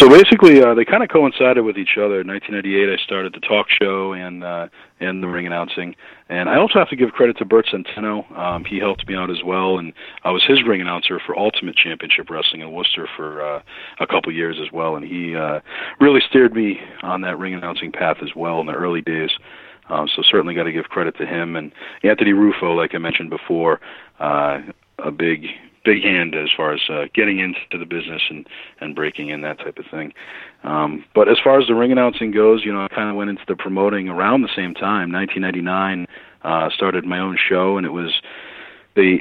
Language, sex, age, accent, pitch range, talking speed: English, male, 40-59, American, 85-105 Hz, 225 wpm